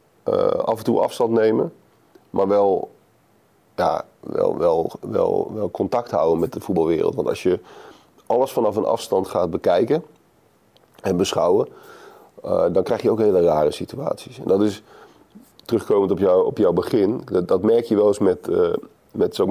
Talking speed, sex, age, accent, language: 170 wpm, male, 40-59, Dutch, Dutch